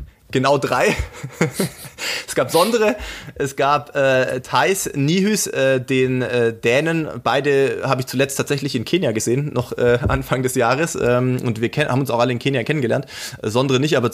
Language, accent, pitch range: German, German, 125-150 Hz